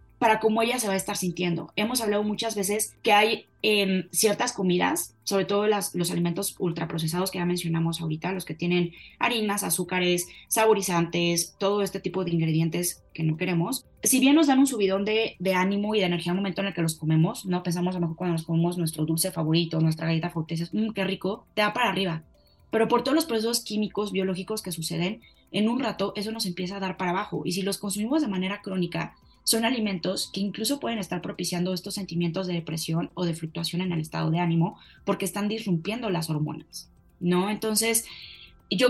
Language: Spanish